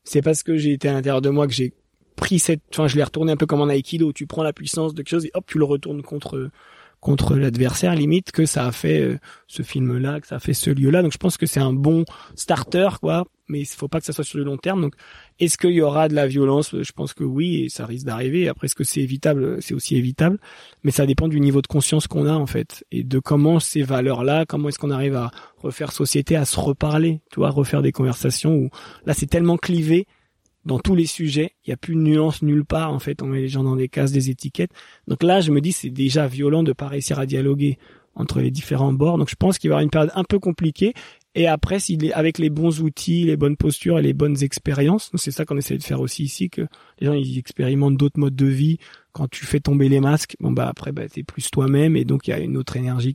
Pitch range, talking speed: 135-160 Hz, 265 wpm